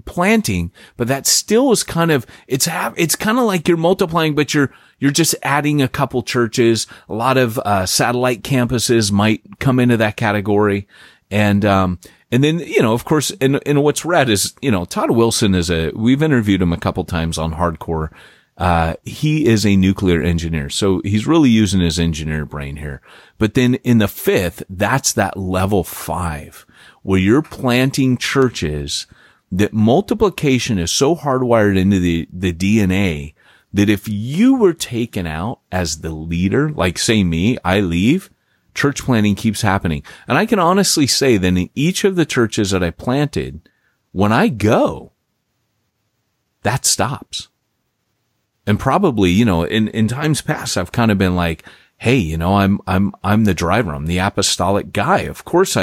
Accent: American